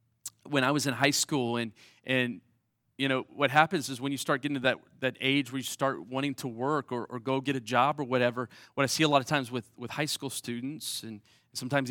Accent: American